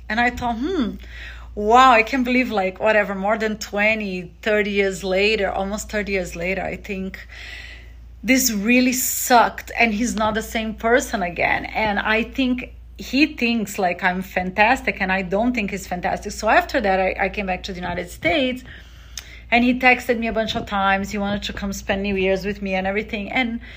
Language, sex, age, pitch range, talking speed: English, female, 30-49, 190-245 Hz, 195 wpm